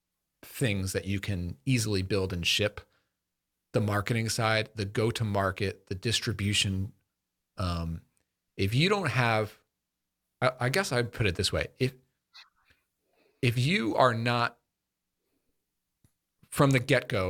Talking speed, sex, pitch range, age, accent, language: 130 wpm, male, 95-125 Hz, 40-59, American, English